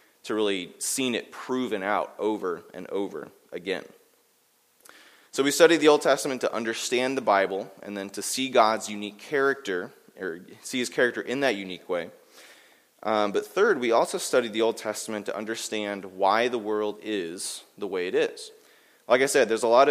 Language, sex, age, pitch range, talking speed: English, male, 30-49, 100-125 Hz, 180 wpm